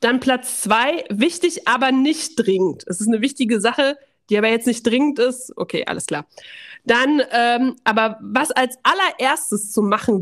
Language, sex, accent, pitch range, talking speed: German, female, German, 215-260 Hz, 170 wpm